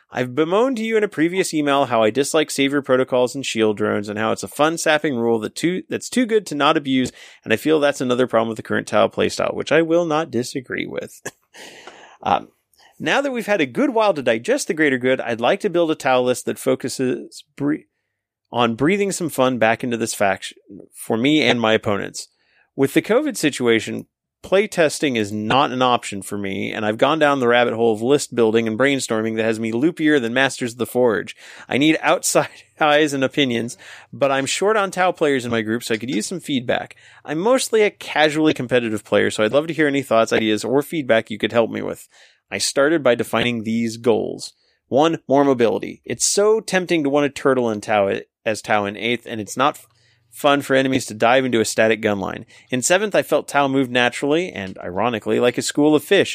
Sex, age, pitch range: male, 30-49, 115-150 Hz